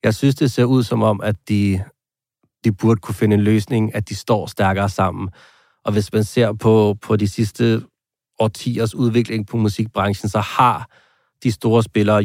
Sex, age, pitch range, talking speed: male, 40-59, 100-115 Hz, 180 wpm